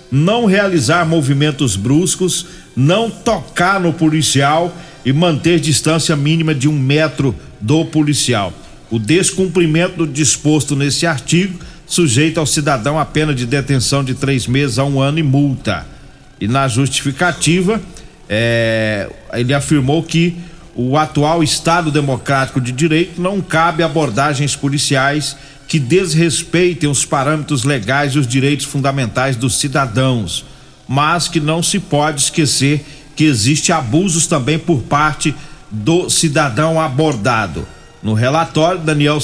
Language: Portuguese